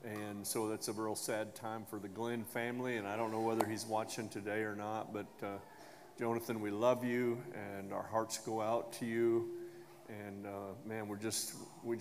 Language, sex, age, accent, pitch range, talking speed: English, male, 40-59, American, 100-115 Hz, 200 wpm